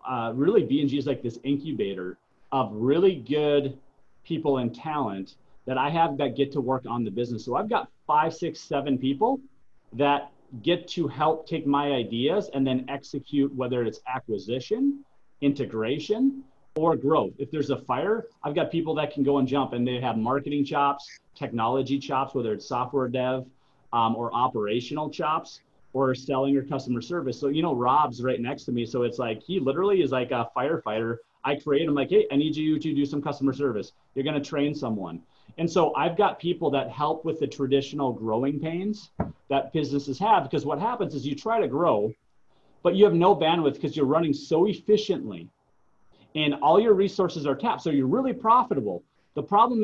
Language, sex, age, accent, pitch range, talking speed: English, male, 30-49, American, 130-165 Hz, 190 wpm